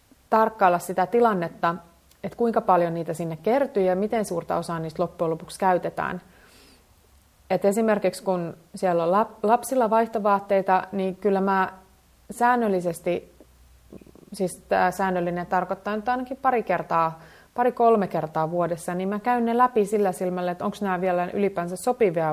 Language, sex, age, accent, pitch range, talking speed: Finnish, female, 30-49, native, 175-220 Hz, 140 wpm